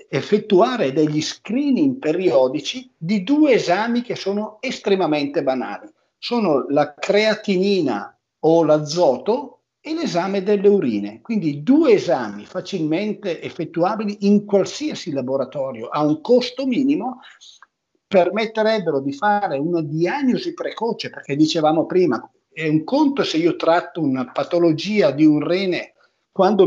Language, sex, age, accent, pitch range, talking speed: Italian, male, 50-69, native, 150-215 Hz, 120 wpm